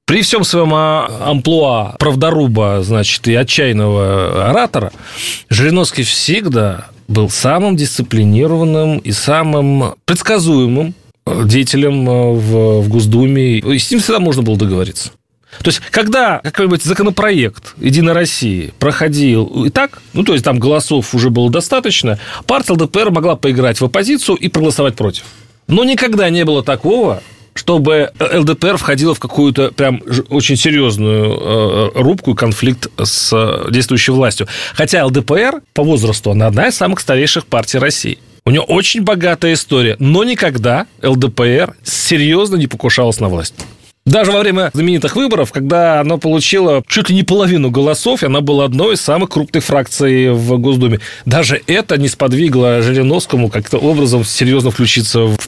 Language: Russian